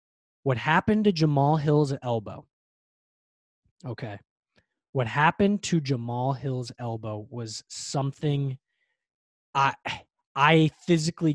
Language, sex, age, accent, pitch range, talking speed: English, male, 20-39, American, 130-165 Hz, 95 wpm